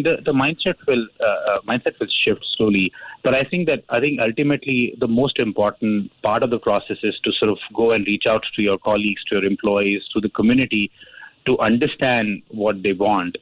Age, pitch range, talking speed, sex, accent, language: 30-49, 105-125 Hz, 205 wpm, male, Indian, English